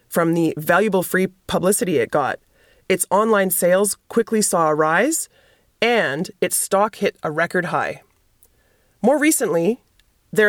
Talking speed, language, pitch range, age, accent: 135 wpm, English, 160-205 Hz, 30-49, American